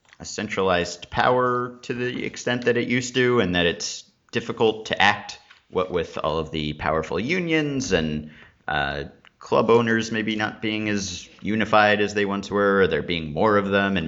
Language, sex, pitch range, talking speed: English, male, 80-115 Hz, 180 wpm